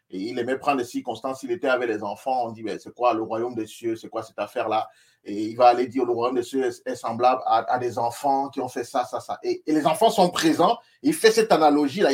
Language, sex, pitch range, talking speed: French, male, 120-160 Hz, 270 wpm